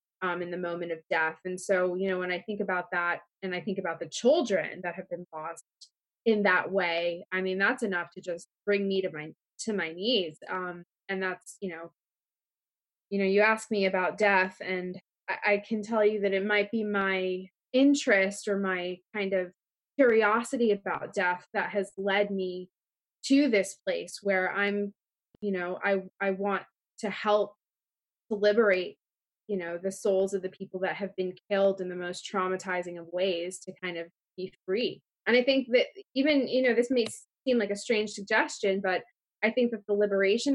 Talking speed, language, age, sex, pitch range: 195 wpm, English, 20-39, female, 185-220 Hz